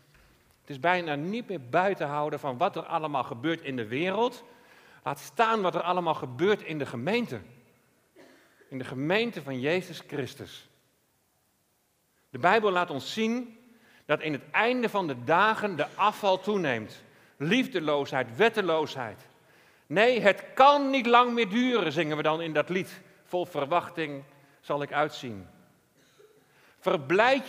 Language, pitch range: Dutch, 140-205 Hz